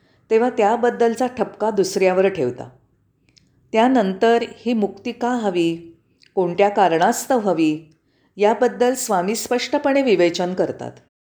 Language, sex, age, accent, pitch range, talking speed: Marathi, female, 40-59, native, 170-230 Hz, 95 wpm